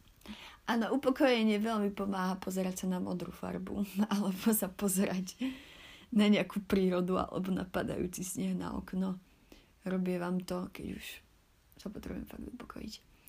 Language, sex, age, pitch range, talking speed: Slovak, female, 30-49, 185-230 Hz, 130 wpm